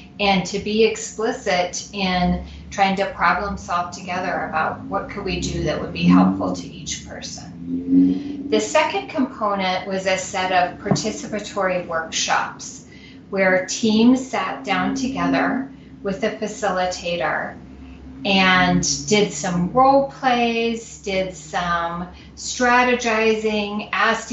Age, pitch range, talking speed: 30-49, 175-220 Hz, 120 wpm